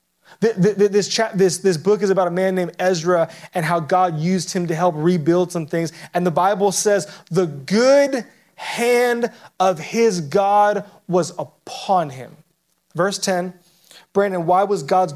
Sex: male